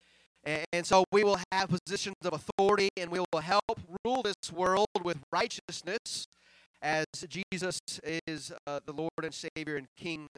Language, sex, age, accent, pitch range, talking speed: English, male, 30-49, American, 170-200 Hz, 155 wpm